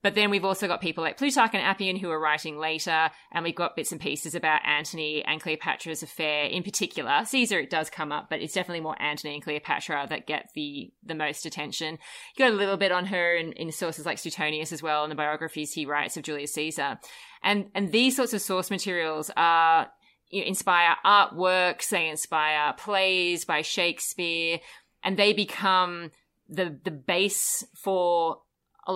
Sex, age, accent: female, 30-49, Australian